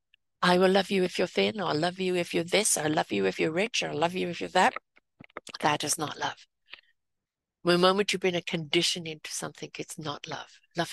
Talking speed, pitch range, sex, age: 240 wpm, 165-200 Hz, female, 60-79